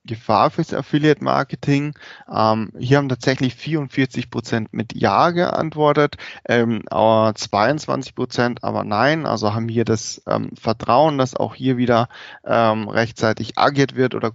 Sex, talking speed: male, 130 wpm